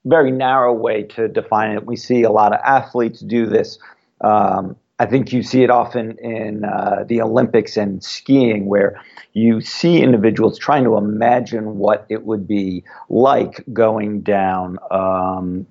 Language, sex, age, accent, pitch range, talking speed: English, male, 50-69, American, 105-120 Hz, 160 wpm